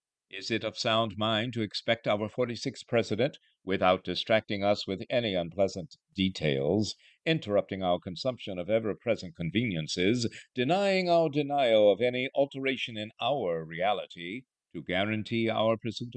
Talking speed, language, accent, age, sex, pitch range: 135 wpm, English, American, 50-69, male, 95-130 Hz